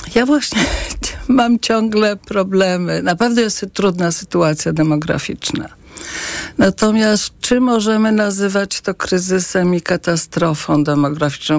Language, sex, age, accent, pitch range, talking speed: Polish, female, 50-69, native, 165-210 Hz, 105 wpm